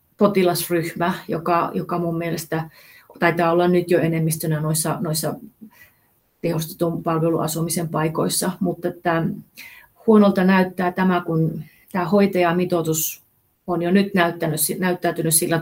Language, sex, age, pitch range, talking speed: Finnish, female, 30-49, 160-185 Hz, 110 wpm